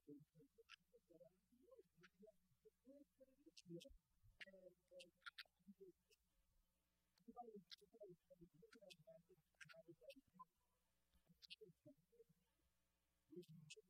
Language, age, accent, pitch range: English, 50-69, American, 155-240 Hz